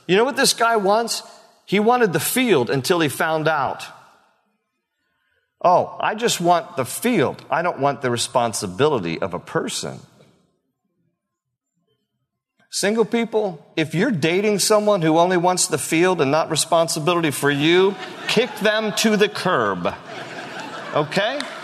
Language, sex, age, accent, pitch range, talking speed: English, male, 50-69, American, 165-255 Hz, 140 wpm